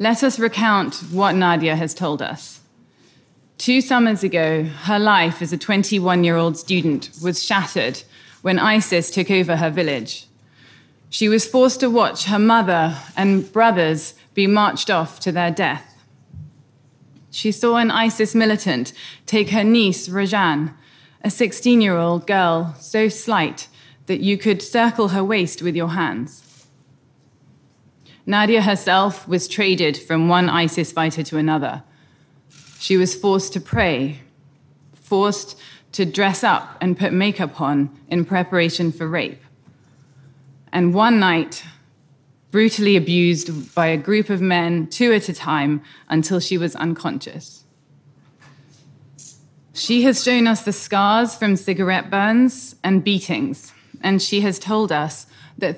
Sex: female